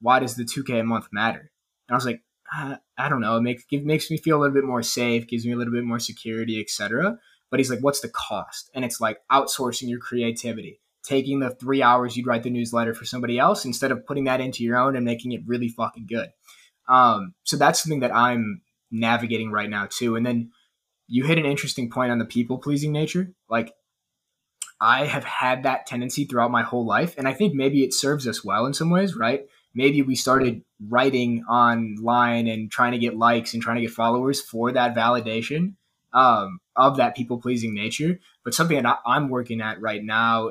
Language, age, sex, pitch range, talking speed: English, 20-39, male, 115-140 Hz, 215 wpm